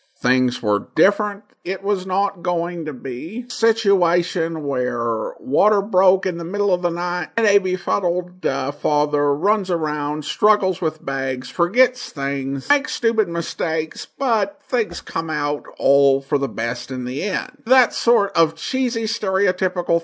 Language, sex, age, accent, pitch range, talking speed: English, male, 50-69, American, 145-235 Hz, 155 wpm